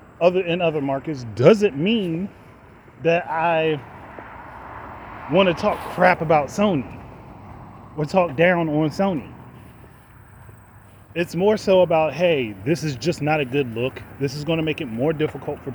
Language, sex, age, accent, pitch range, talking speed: English, male, 30-49, American, 135-180 Hz, 150 wpm